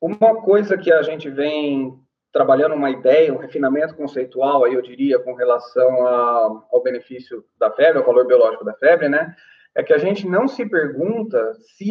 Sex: male